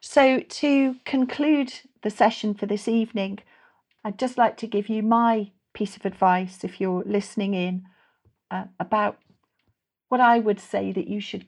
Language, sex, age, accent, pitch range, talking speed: English, female, 40-59, British, 190-225 Hz, 160 wpm